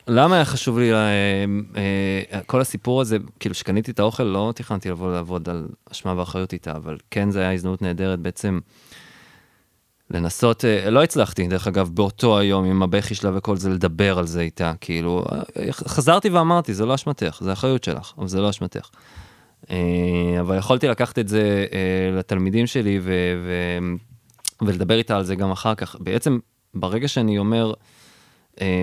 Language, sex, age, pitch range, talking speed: Hebrew, male, 20-39, 95-120 Hz, 160 wpm